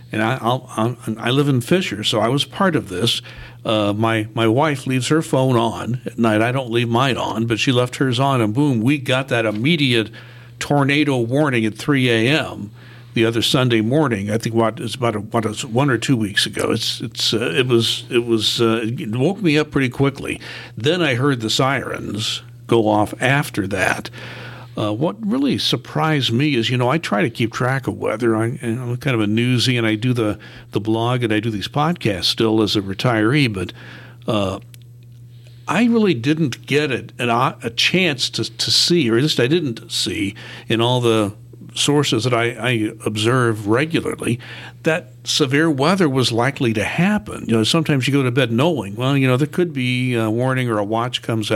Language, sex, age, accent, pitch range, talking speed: English, male, 60-79, American, 115-140 Hz, 205 wpm